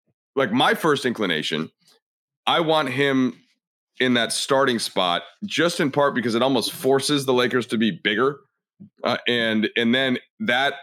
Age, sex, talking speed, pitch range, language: 30-49, male, 155 wpm, 105-135 Hz, English